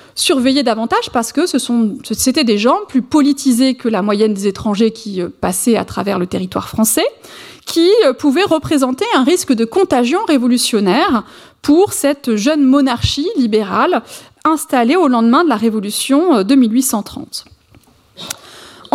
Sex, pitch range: female, 235-315 Hz